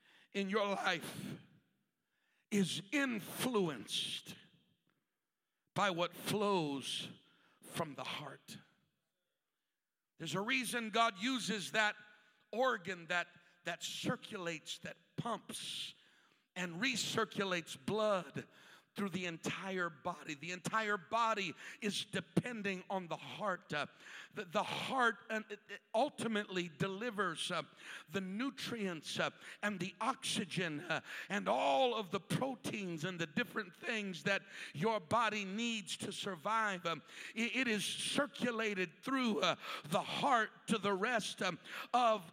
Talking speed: 115 wpm